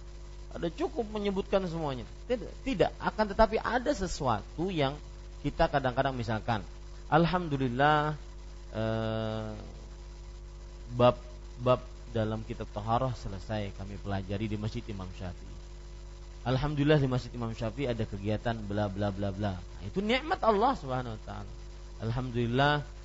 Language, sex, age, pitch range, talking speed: Malay, male, 30-49, 100-150 Hz, 110 wpm